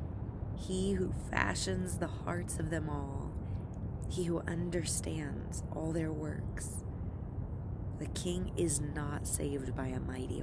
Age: 20-39